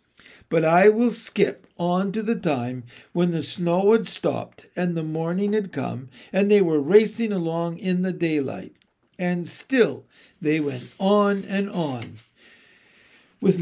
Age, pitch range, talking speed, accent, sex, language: 60-79, 155-210 Hz, 150 wpm, American, male, English